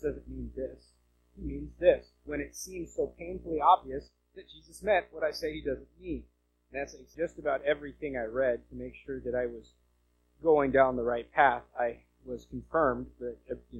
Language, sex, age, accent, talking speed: English, male, 30-49, American, 190 wpm